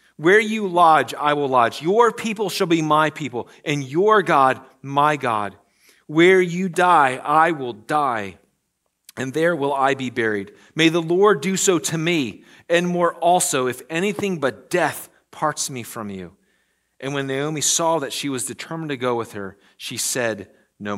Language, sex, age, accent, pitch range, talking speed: English, male, 40-59, American, 130-190 Hz, 175 wpm